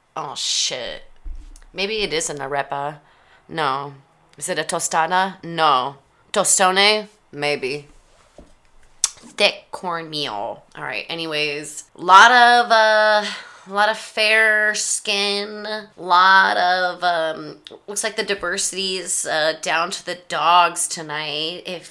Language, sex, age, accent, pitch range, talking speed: English, female, 20-39, American, 160-205 Hz, 115 wpm